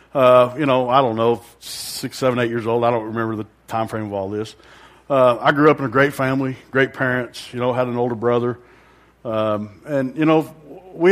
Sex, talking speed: male, 220 wpm